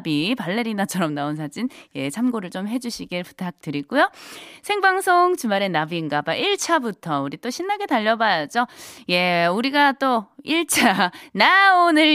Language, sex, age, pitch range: Korean, female, 20-39, 180-290 Hz